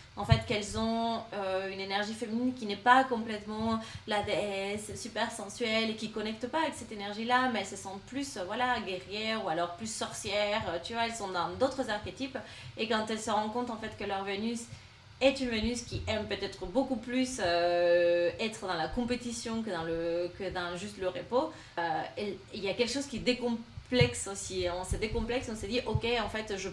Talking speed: 210 wpm